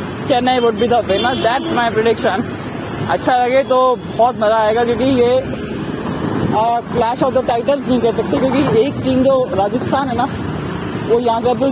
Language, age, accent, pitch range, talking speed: Hindi, 20-39, native, 210-245 Hz, 170 wpm